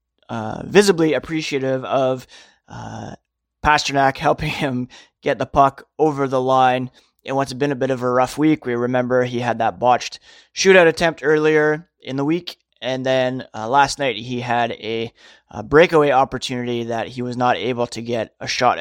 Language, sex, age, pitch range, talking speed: English, male, 30-49, 120-140 Hz, 180 wpm